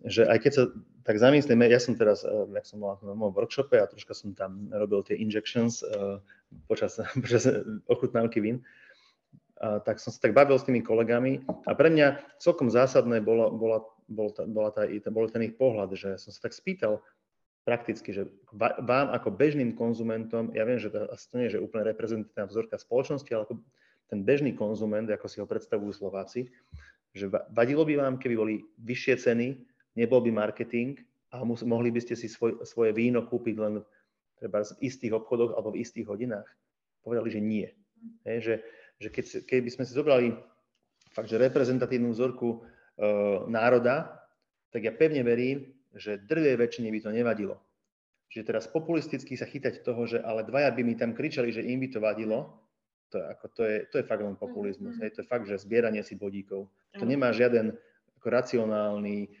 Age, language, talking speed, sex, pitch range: 30-49, Slovak, 180 wpm, male, 110-130 Hz